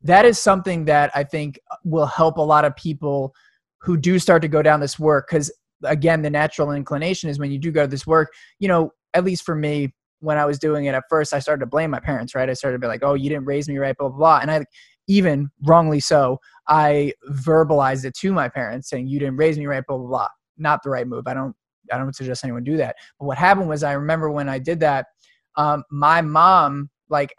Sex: male